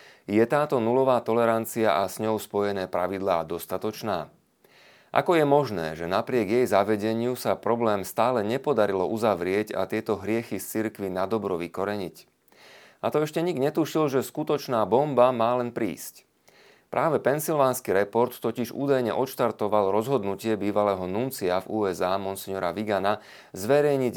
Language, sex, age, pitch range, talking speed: Slovak, male, 30-49, 100-125 Hz, 135 wpm